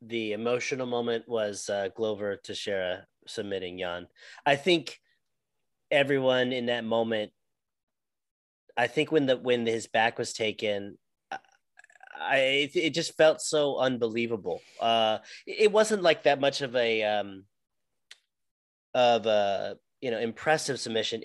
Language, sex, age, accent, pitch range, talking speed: English, male, 30-49, American, 115-145 Hz, 135 wpm